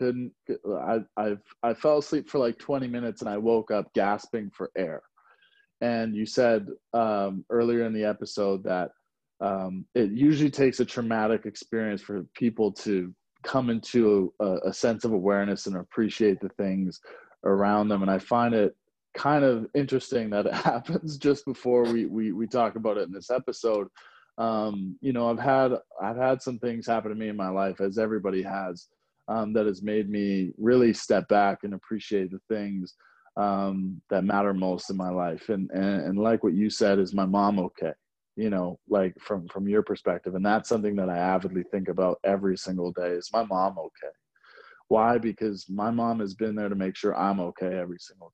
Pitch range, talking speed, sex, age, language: 95-115 Hz, 190 wpm, male, 20-39, English